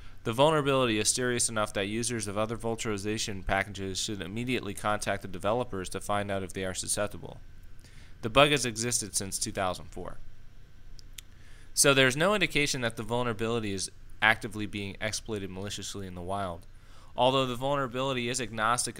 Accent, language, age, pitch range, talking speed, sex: American, English, 30-49, 100-120 Hz, 160 wpm, male